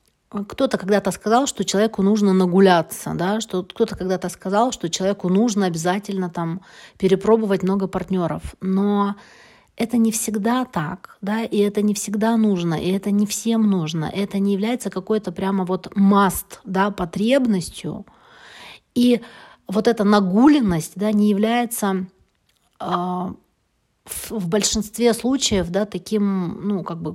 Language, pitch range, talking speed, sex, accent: Russian, 190-225 Hz, 135 wpm, female, native